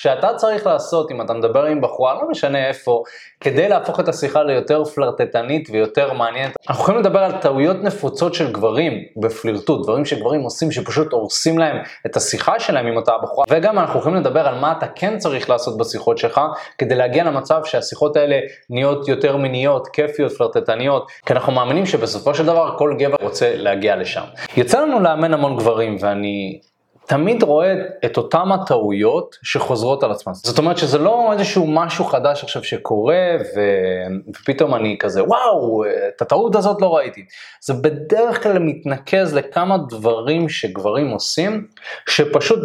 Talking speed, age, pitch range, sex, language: 160 wpm, 20-39, 125-175 Hz, male, Hebrew